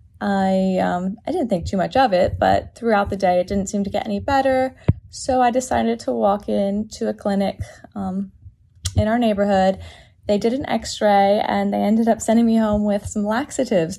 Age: 20-39